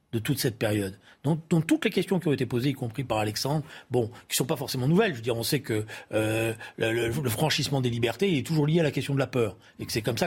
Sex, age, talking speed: male, 40-59, 290 wpm